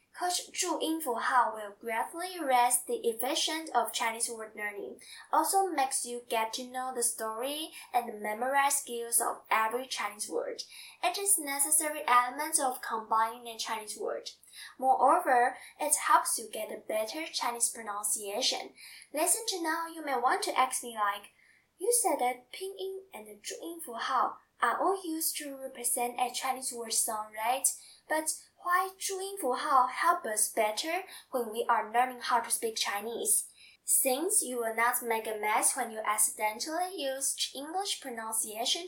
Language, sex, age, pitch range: Chinese, female, 10-29, 225-315 Hz